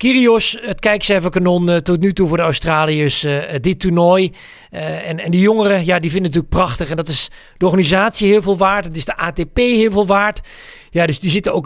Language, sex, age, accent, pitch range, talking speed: Dutch, male, 40-59, Dutch, 150-210 Hz, 205 wpm